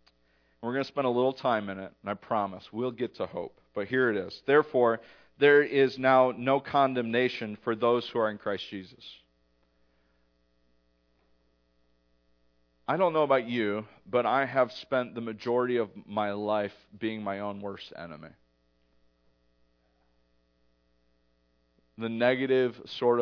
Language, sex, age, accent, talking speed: English, male, 40-59, American, 140 wpm